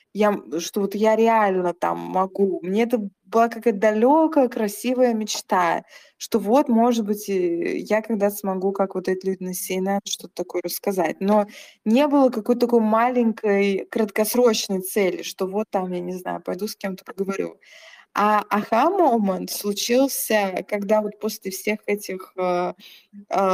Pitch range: 190-225 Hz